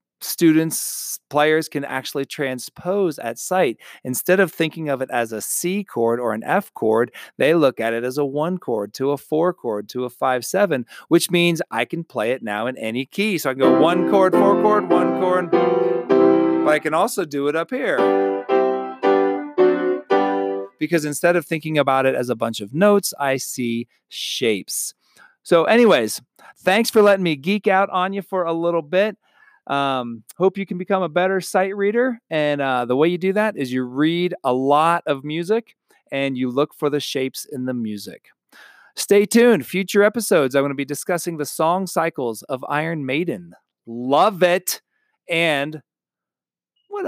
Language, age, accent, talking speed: English, 40-59, American, 180 wpm